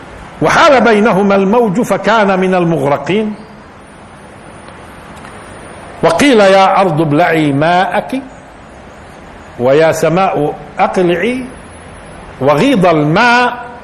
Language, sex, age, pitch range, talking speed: Arabic, male, 50-69, 145-210 Hz, 70 wpm